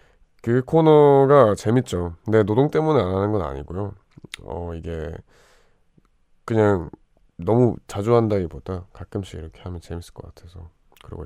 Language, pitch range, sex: Korean, 85-105 Hz, male